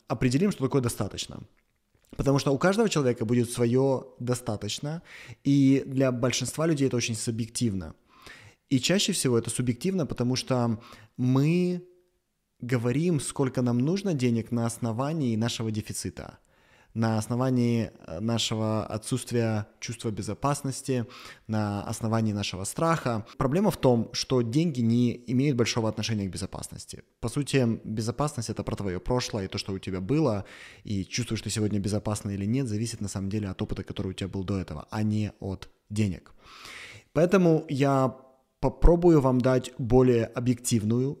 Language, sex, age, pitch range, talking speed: Russian, male, 20-39, 110-135 Hz, 145 wpm